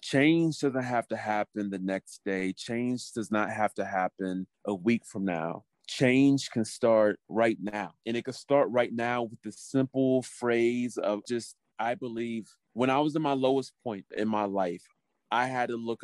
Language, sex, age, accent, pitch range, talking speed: English, male, 30-49, American, 105-135 Hz, 190 wpm